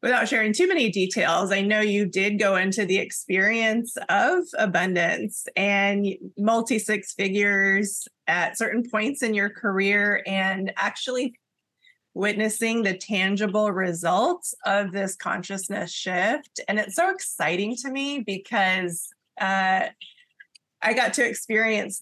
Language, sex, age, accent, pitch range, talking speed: English, female, 20-39, American, 195-225 Hz, 125 wpm